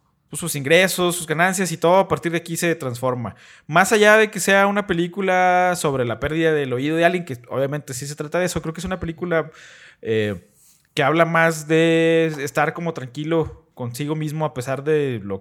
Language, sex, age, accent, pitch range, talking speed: Spanish, male, 20-39, Mexican, 125-165 Hz, 205 wpm